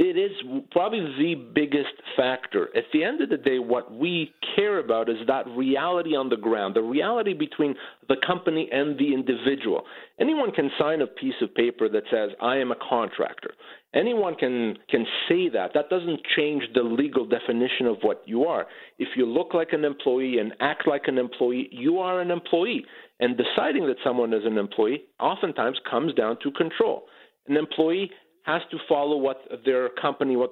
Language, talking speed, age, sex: English, 185 wpm, 50-69, male